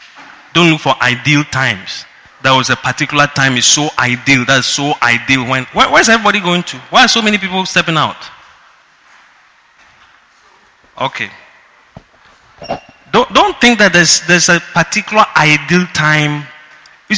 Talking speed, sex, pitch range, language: 145 wpm, male, 145-215 Hz, English